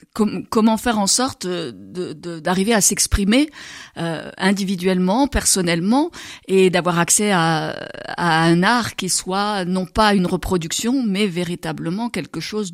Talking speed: 140 wpm